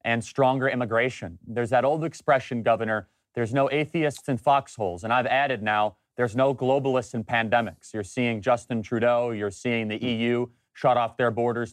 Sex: male